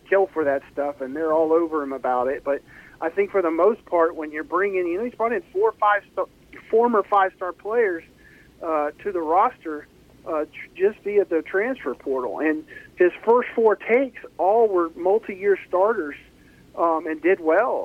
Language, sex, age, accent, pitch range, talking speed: English, male, 40-59, American, 150-195 Hz, 195 wpm